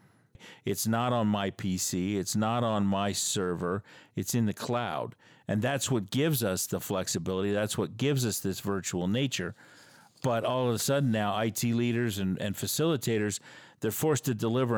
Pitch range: 100-125 Hz